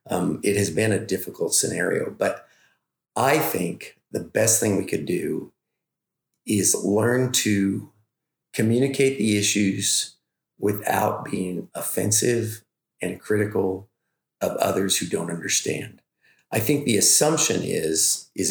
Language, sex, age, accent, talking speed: English, male, 40-59, American, 125 wpm